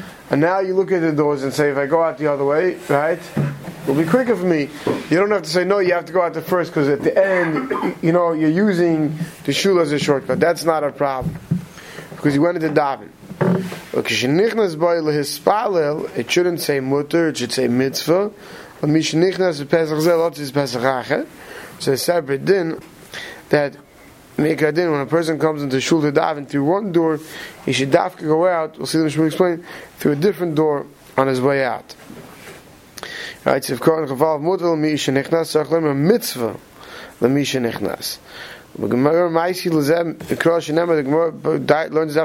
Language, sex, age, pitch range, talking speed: English, male, 30-49, 145-175 Hz, 135 wpm